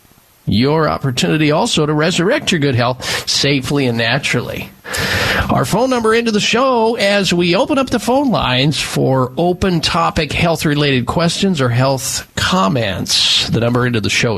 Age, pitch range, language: 50-69, 125-185 Hz, English